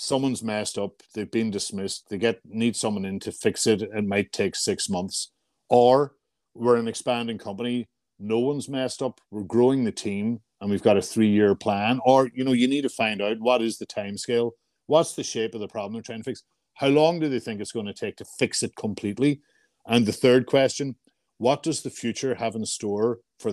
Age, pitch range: 50-69, 100-120 Hz